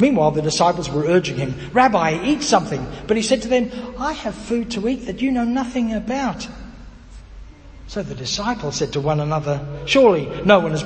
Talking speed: 195 wpm